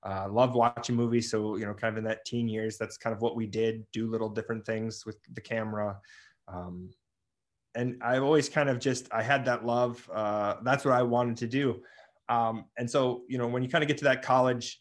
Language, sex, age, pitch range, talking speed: English, male, 20-39, 110-130 Hz, 235 wpm